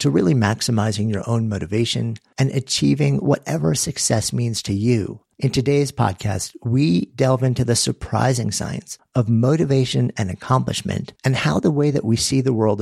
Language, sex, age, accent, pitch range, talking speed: English, male, 50-69, American, 105-130 Hz, 165 wpm